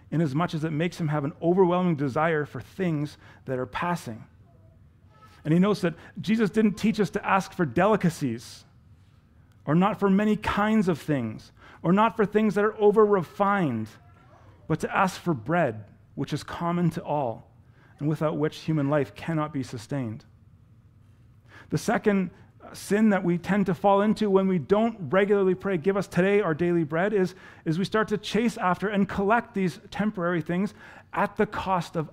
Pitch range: 125-190 Hz